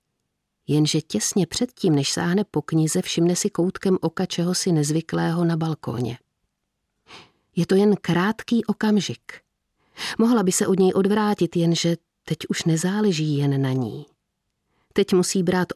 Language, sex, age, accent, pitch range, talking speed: Czech, female, 50-69, native, 155-190 Hz, 135 wpm